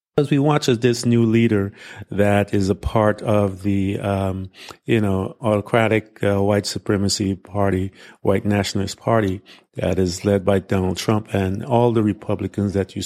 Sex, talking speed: male, 160 wpm